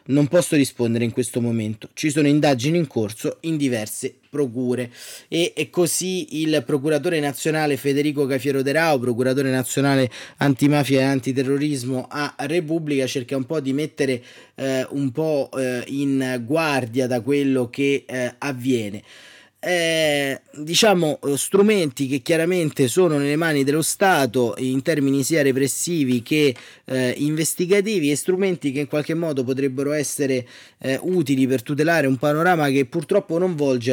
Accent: native